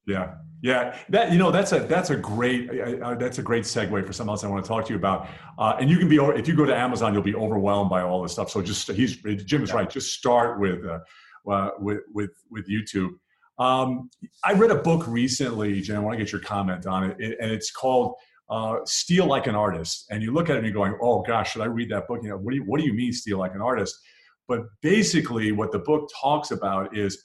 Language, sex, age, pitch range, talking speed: English, male, 40-59, 100-140 Hz, 260 wpm